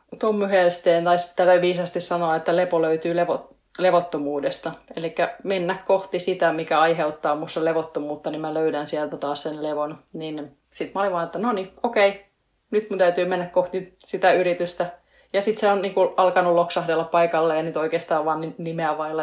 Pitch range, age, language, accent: 165-195 Hz, 20-39, Finnish, native